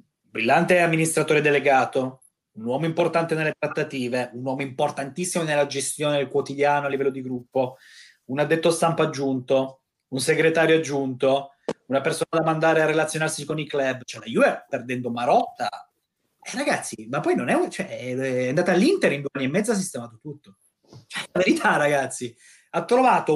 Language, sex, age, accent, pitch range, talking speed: Italian, male, 30-49, native, 135-190 Hz, 160 wpm